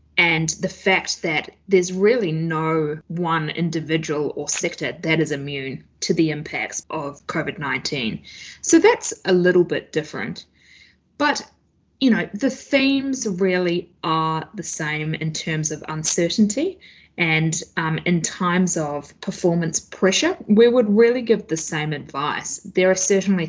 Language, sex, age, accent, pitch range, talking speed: English, female, 20-39, Australian, 155-205 Hz, 140 wpm